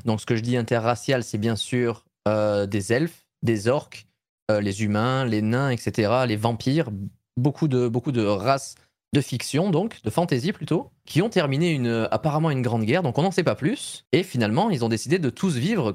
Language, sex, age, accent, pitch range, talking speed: French, male, 20-39, French, 110-150 Hz, 210 wpm